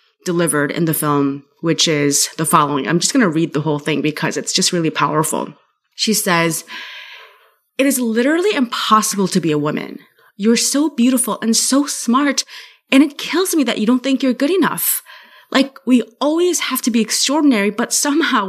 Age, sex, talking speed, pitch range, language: 20-39, female, 185 wpm, 180-255 Hz, English